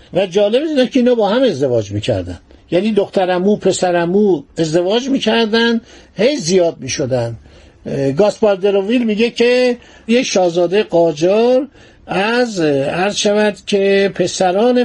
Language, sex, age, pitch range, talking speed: Persian, male, 50-69, 160-215 Hz, 115 wpm